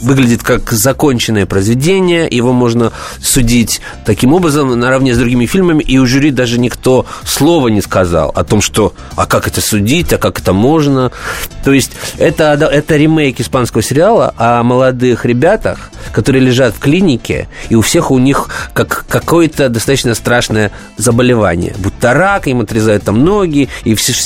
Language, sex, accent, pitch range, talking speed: Russian, male, native, 110-140 Hz, 160 wpm